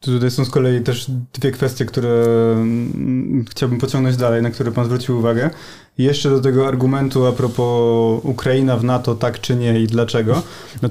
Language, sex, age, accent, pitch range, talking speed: Polish, male, 20-39, native, 115-130 Hz, 175 wpm